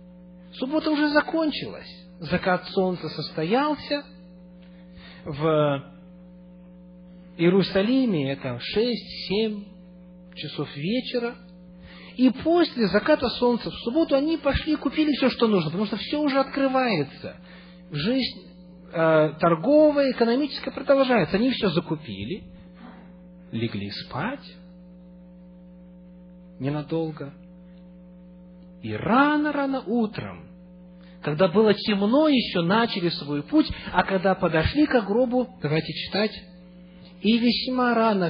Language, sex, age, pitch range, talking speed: English, male, 40-59, 165-225 Hz, 95 wpm